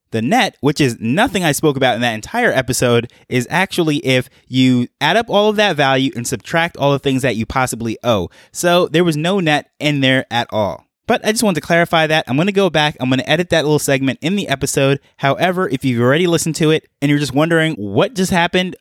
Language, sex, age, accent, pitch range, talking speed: English, male, 20-39, American, 125-160 Hz, 240 wpm